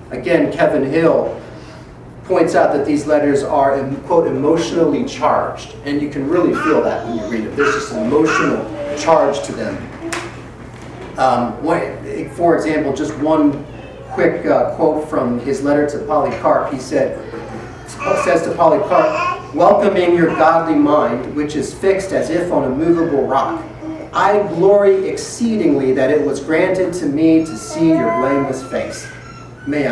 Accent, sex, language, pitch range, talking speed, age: American, male, English, 140-170 Hz, 150 wpm, 40-59